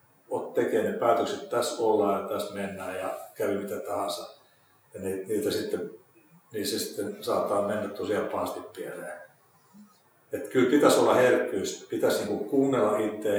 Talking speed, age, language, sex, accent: 145 wpm, 50-69, Finnish, male, native